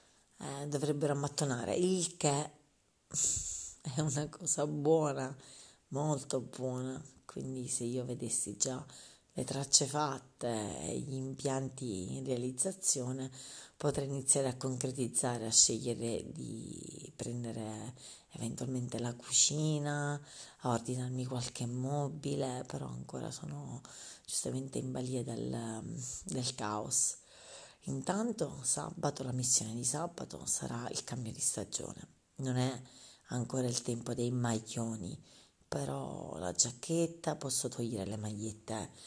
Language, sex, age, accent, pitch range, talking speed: Italian, female, 40-59, native, 115-140 Hz, 110 wpm